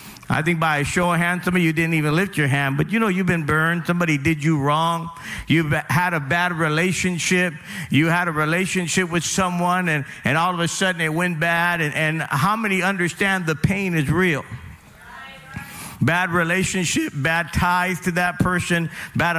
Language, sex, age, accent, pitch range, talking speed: English, male, 50-69, American, 160-195 Hz, 190 wpm